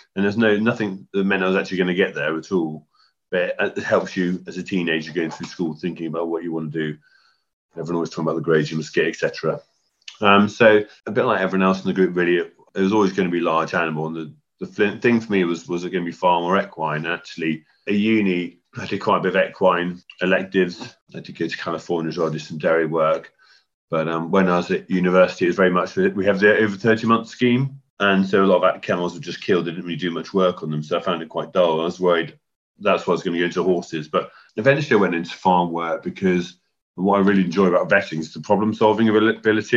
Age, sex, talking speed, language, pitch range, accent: 30-49, male, 260 wpm, English, 85-100 Hz, British